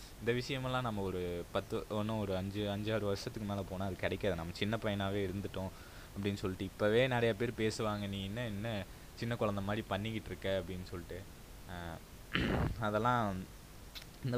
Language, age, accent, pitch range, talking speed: Tamil, 20-39, native, 95-115 Hz, 150 wpm